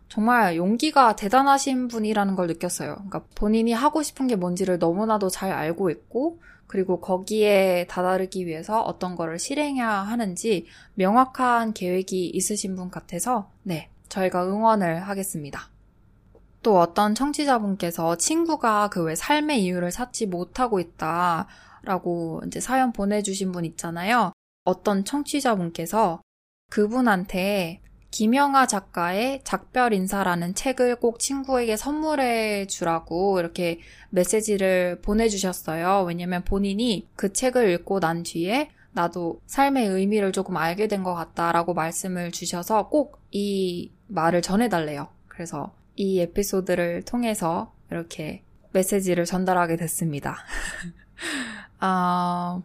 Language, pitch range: Korean, 175-225 Hz